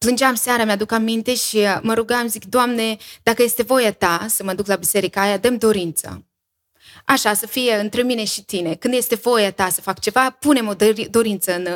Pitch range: 200-260 Hz